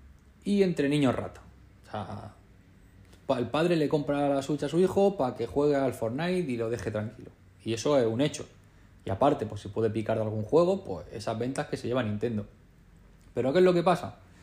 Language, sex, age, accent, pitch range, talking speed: Spanish, male, 20-39, Spanish, 105-145 Hz, 210 wpm